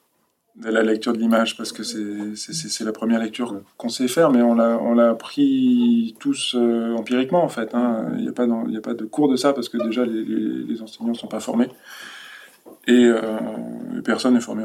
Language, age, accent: French, 20-39, French